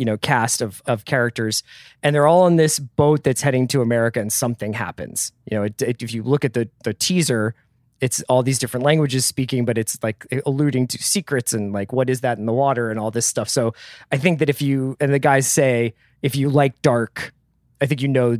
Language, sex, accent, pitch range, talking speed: English, male, American, 115-145 Hz, 230 wpm